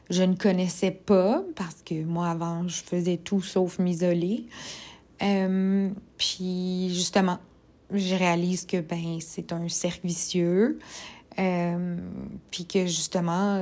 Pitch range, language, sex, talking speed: 175-200 Hz, French, female, 125 wpm